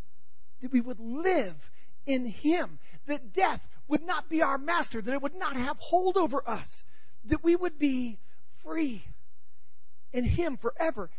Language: English